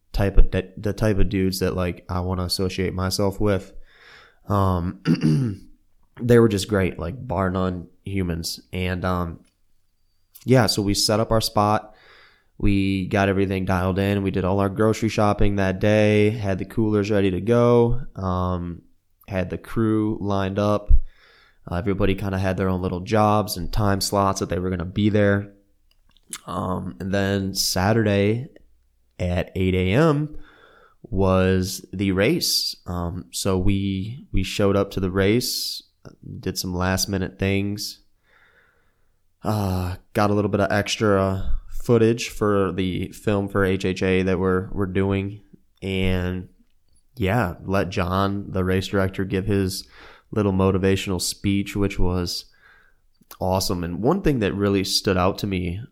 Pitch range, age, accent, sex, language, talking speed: 90-100 Hz, 20-39, American, male, English, 150 wpm